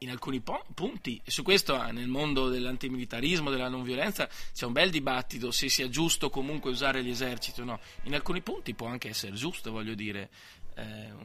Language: Italian